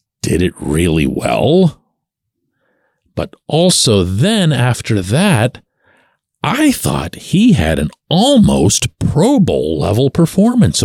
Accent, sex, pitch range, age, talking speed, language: American, male, 100-140 Hz, 50-69, 105 wpm, English